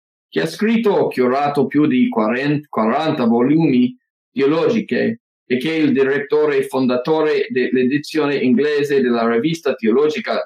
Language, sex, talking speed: English, male, 130 wpm